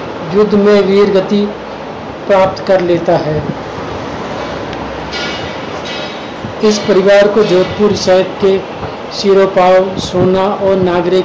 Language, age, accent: Hindi, 50-69, native